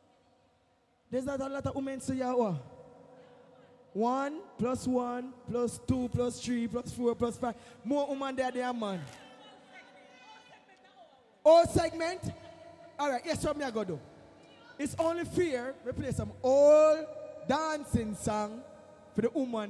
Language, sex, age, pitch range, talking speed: English, male, 20-39, 235-300 Hz, 140 wpm